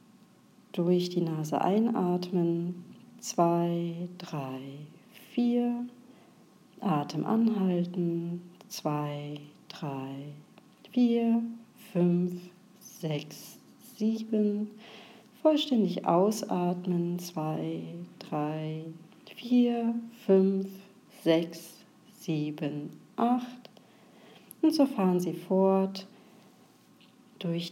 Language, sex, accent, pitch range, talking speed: German, female, German, 170-220 Hz, 65 wpm